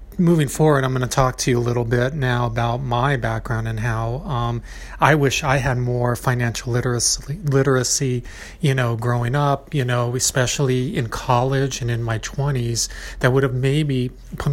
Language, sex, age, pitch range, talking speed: English, male, 40-59, 120-135 Hz, 180 wpm